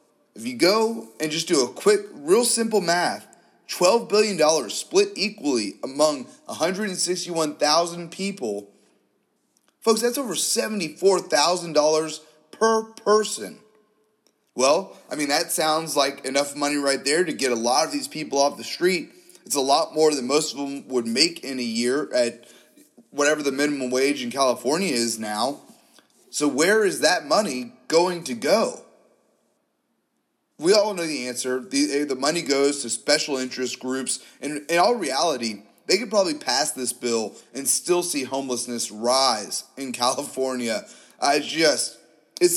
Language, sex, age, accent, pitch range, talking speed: English, male, 30-49, American, 130-190 Hz, 150 wpm